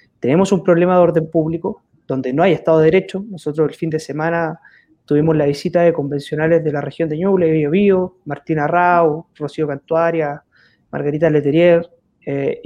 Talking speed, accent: 165 wpm, Argentinian